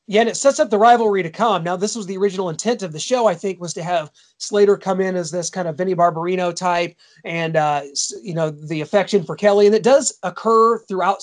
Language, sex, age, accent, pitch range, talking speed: English, male, 30-49, American, 175-215 Hz, 245 wpm